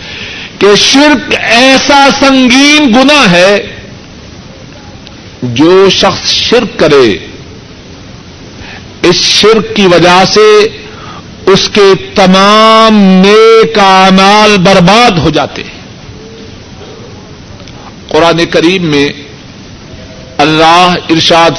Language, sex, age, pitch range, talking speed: Urdu, male, 50-69, 160-220 Hz, 80 wpm